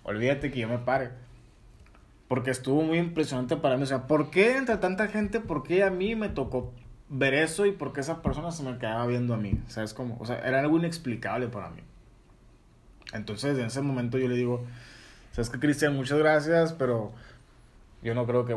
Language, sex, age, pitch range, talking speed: Spanish, male, 20-39, 115-145 Hz, 205 wpm